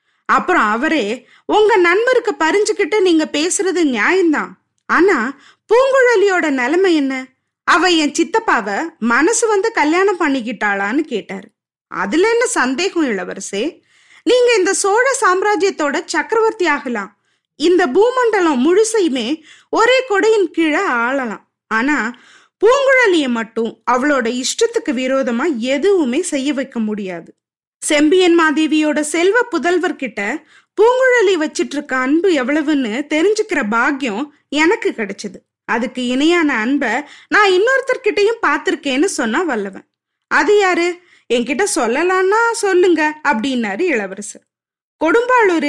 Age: 20-39